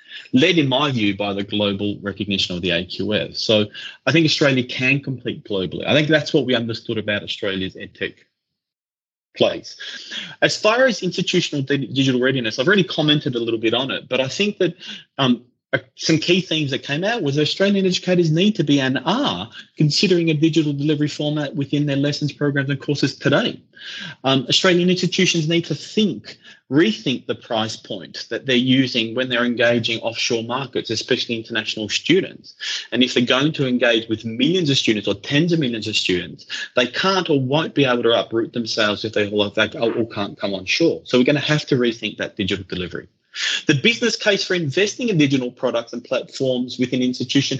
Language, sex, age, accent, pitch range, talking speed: English, male, 30-49, Australian, 115-155 Hz, 195 wpm